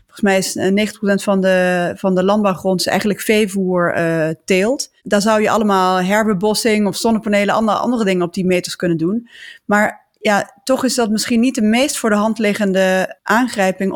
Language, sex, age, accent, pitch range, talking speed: Dutch, female, 20-39, Dutch, 195-225 Hz, 185 wpm